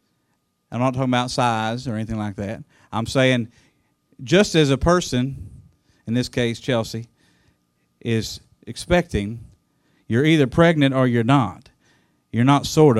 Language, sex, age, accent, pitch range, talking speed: English, male, 40-59, American, 115-145 Hz, 140 wpm